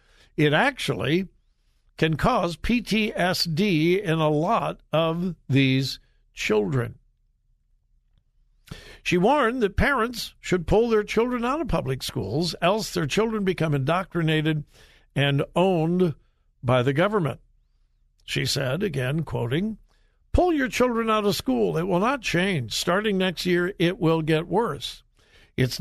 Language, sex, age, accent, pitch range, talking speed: English, male, 60-79, American, 135-190 Hz, 130 wpm